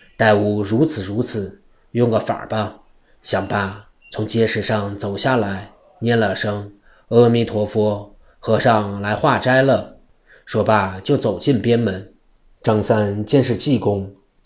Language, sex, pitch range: Chinese, male, 100-115 Hz